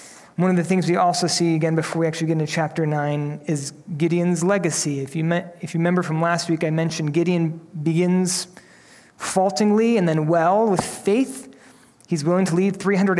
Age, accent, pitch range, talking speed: 30-49, American, 160-195 Hz, 195 wpm